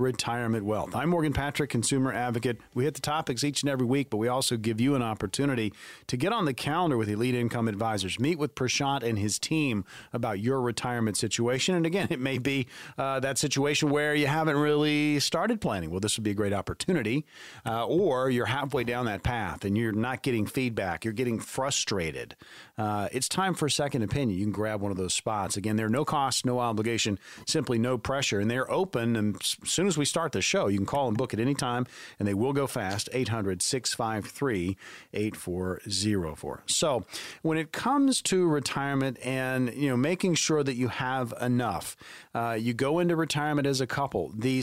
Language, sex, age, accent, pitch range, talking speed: English, male, 40-59, American, 110-145 Hz, 200 wpm